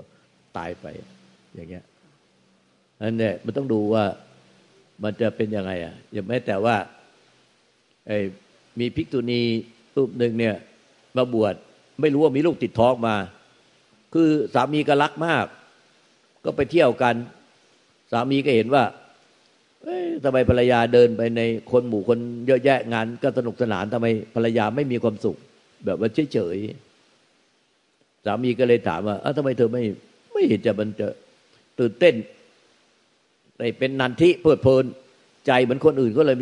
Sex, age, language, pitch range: male, 60-79, Thai, 110-130 Hz